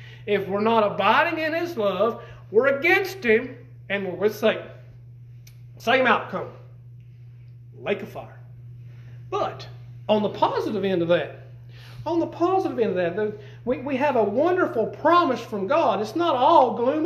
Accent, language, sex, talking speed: American, English, male, 150 wpm